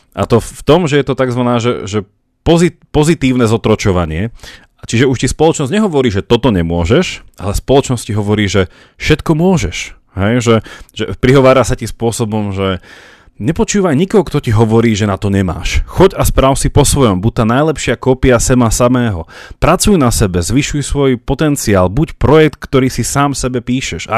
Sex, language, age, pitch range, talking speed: male, Slovak, 30-49, 110-135 Hz, 170 wpm